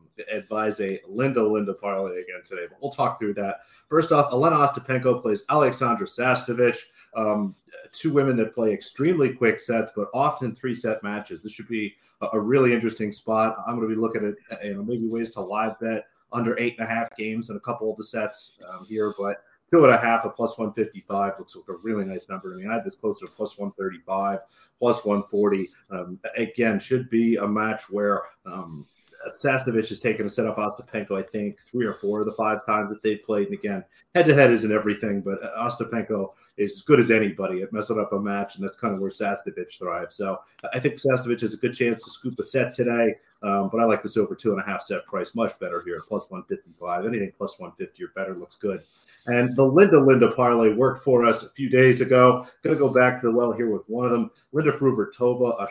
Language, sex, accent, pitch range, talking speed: English, male, American, 105-125 Hz, 220 wpm